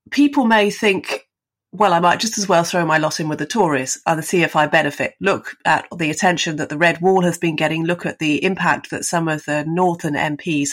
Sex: female